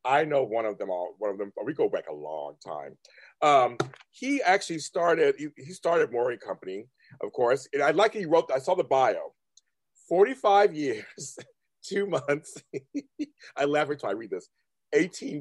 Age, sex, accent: 40-59, male, American